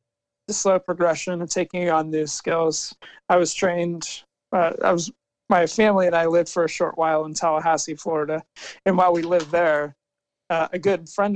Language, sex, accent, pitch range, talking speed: English, male, American, 155-180 Hz, 185 wpm